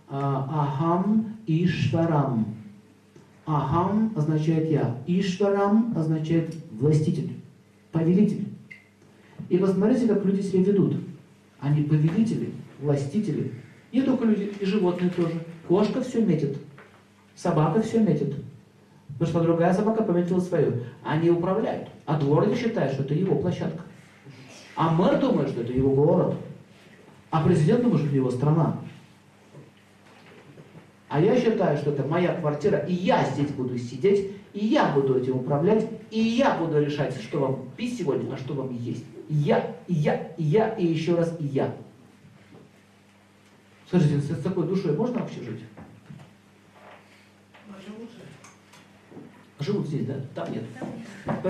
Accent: native